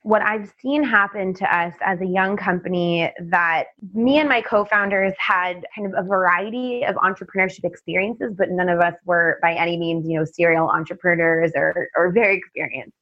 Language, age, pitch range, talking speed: English, 20-39, 175-210 Hz, 180 wpm